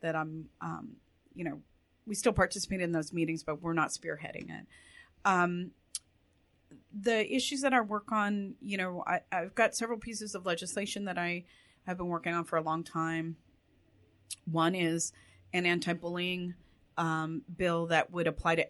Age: 30-49